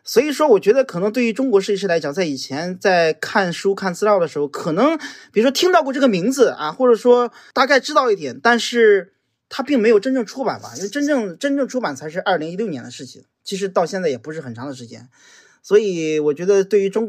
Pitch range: 165-255 Hz